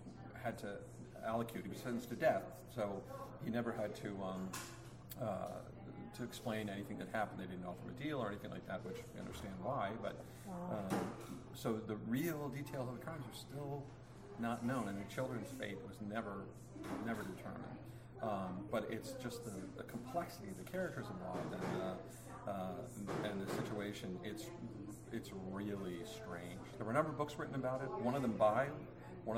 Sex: male